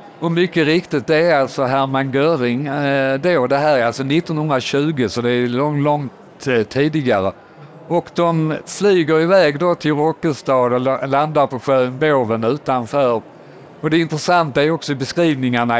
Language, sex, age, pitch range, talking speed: Swedish, male, 50-69, 125-155 Hz, 155 wpm